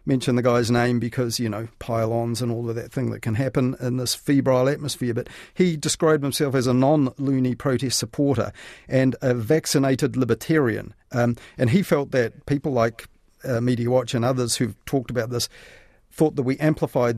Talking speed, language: 185 wpm, English